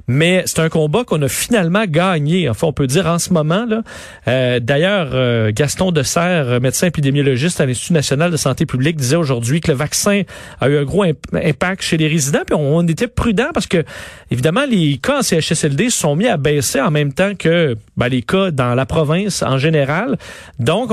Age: 40-59